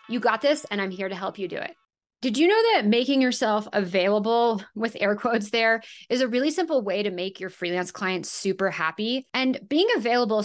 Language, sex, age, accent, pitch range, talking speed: English, female, 30-49, American, 185-250 Hz, 215 wpm